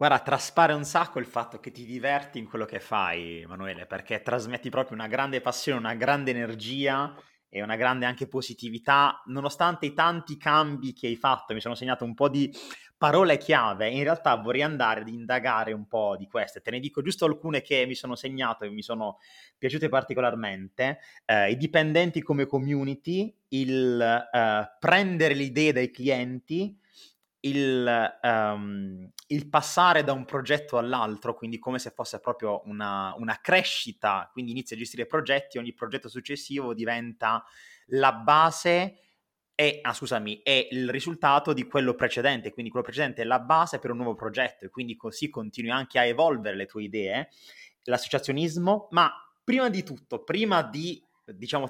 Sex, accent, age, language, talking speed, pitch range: male, native, 30-49, Italian, 165 wpm, 115-145 Hz